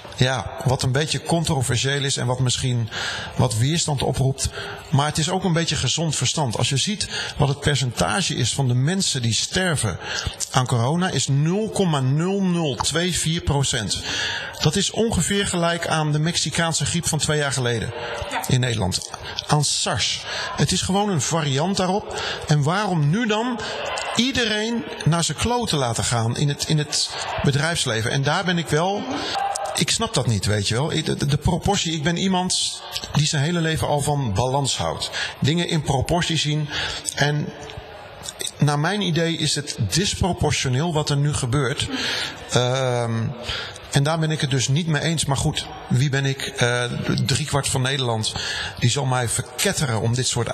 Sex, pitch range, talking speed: male, 125-165 Hz, 165 wpm